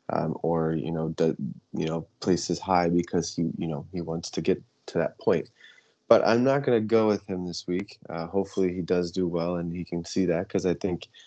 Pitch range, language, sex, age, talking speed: 85-100 Hz, English, male, 20-39, 235 wpm